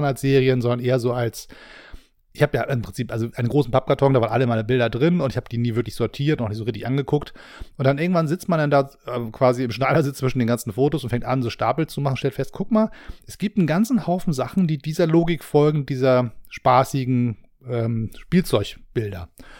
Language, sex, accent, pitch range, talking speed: German, male, German, 115-150 Hz, 225 wpm